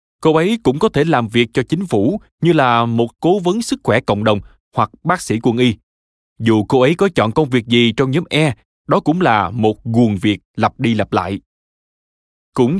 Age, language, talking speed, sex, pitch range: 20-39, Vietnamese, 215 wpm, male, 105-160 Hz